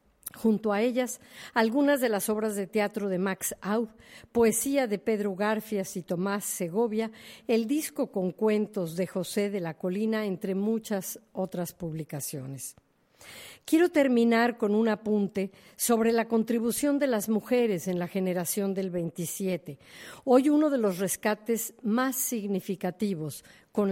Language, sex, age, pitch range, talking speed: Spanish, female, 50-69, 195-240 Hz, 140 wpm